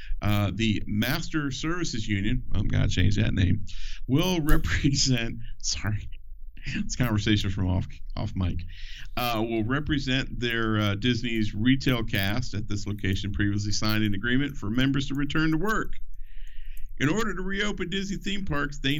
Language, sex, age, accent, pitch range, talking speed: English, male, 50-69, American, 100-130 Hz, 150 wpm